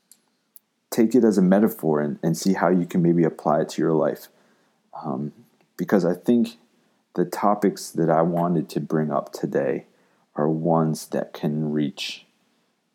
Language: English